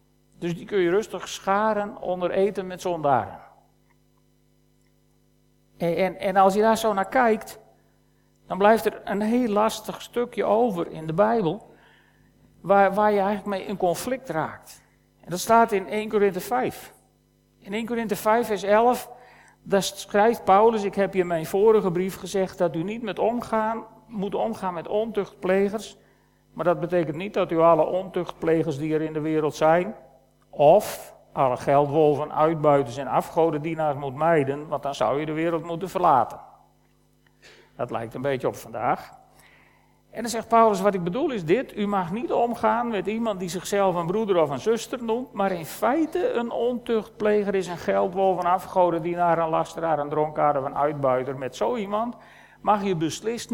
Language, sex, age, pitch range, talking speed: Dutch, male, 50-69, 165-220 Hz, 170 wpm